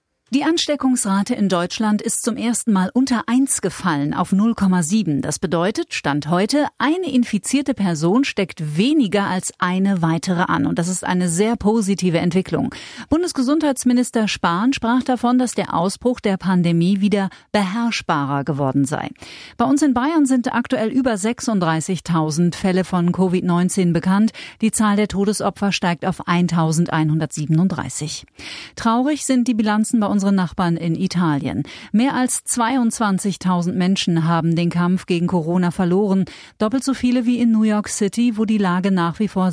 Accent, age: German, 40-59